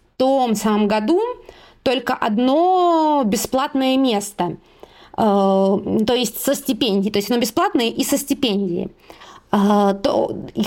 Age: 20-39